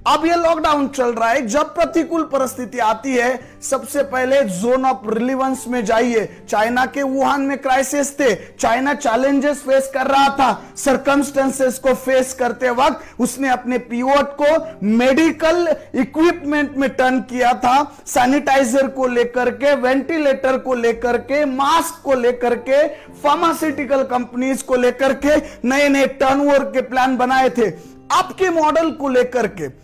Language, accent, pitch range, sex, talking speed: Hindi, native, 245-285 Hz, male, 100 wpm